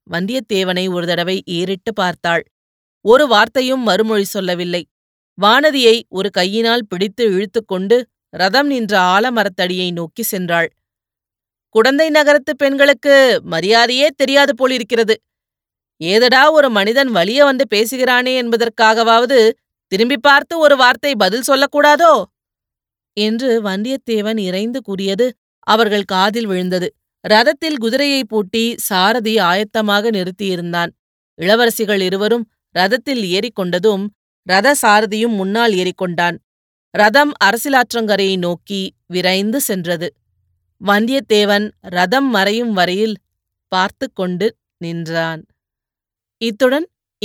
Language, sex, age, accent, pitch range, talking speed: Tamil, female, 30-49, native, 185-260 Hz, 90 wpm